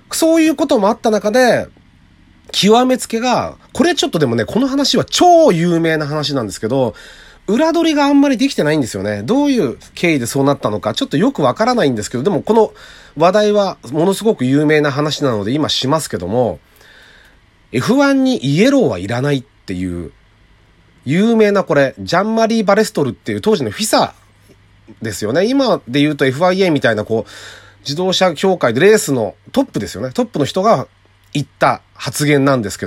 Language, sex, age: Japanese, male, 30-49